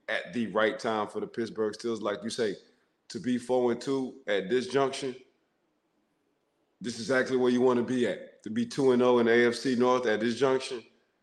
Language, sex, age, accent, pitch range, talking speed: English, male, 20-39, American, 105-120 Hz, 205 wpm